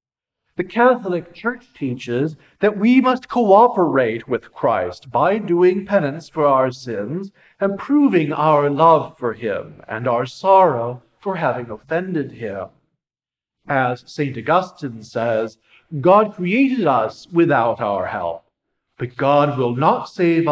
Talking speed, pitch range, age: 130 wpm, 130-195 Hz, 40-59